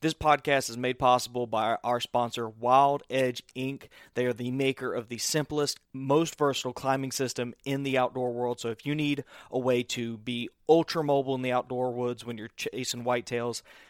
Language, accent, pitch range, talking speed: English, American, 120-140 Hz, 185 wpm